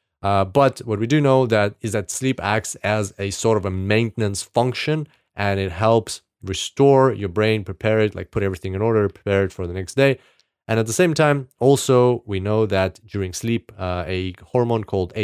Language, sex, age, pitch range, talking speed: English, male, 30-49, 100-120 Hz, 205 wpm